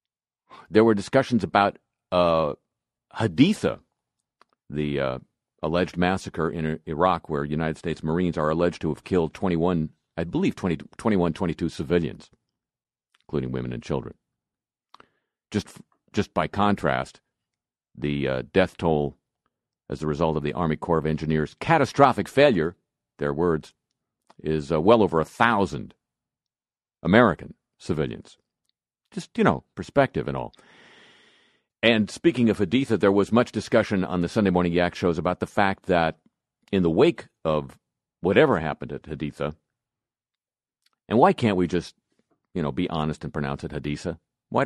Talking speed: 140 wpm